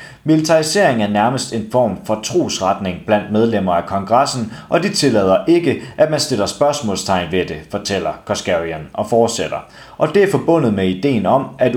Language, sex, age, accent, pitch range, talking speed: Danish, male, 30-49, native, 105-150 Hz, 170 wpm